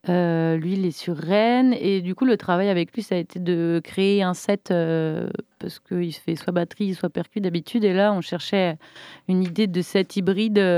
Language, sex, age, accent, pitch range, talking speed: French, female, 30-49, French, 170-205 Hz, 210 wpm